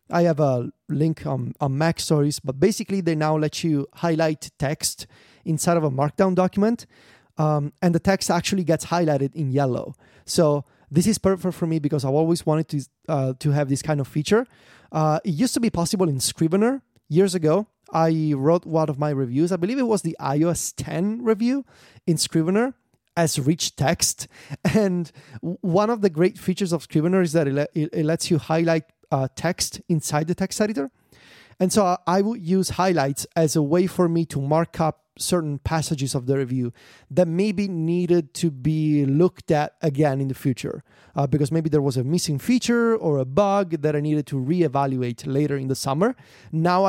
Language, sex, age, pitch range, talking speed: English, male, 30-49, 145-180 Hz, 195 wpm